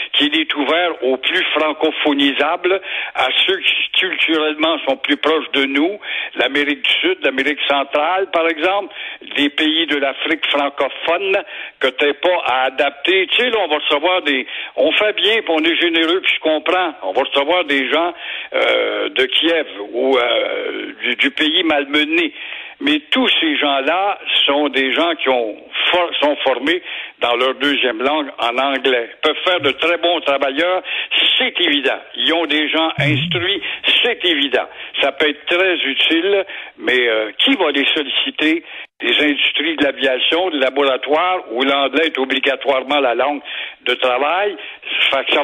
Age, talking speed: 60-79, 160 wpm